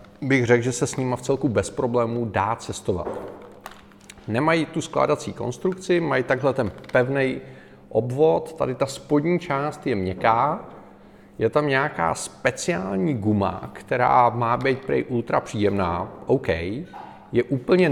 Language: Czech